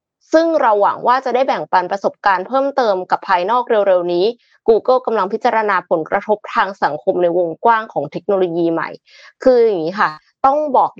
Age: 20-39